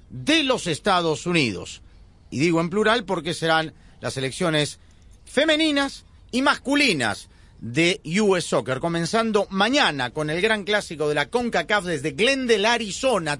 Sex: male